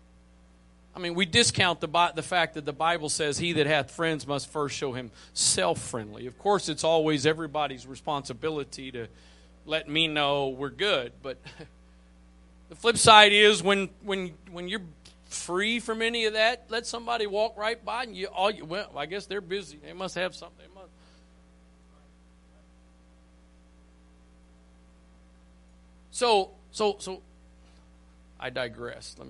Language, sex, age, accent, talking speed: English, male, 40-59, American, 150 wpm